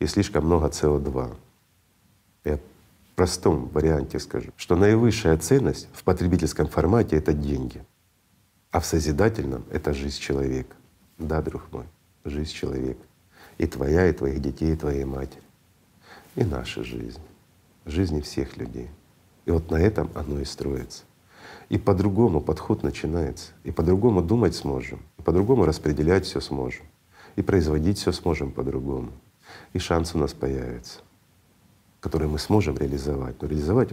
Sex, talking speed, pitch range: male, 140 wpm, 70-95 Hz